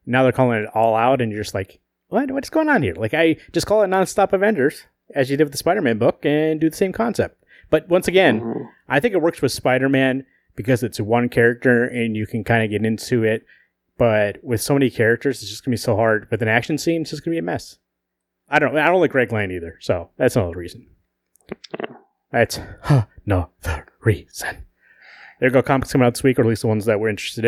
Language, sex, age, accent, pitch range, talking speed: English, male, 30-49, American, 110-135 Hz, 230 wpm